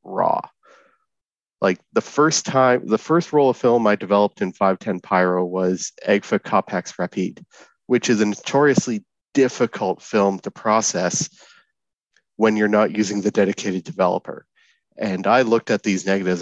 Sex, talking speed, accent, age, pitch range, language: male, 145 wpm, American, 30-49, 95-120 Hz, English